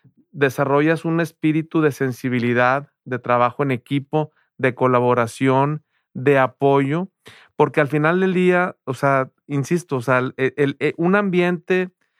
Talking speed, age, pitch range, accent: 140 wpm, 40-59, 130-160 Hz, Mexican